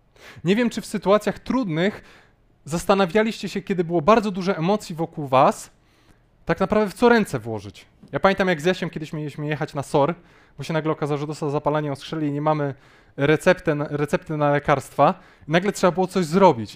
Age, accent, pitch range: 20-39, native, 140-185 Hz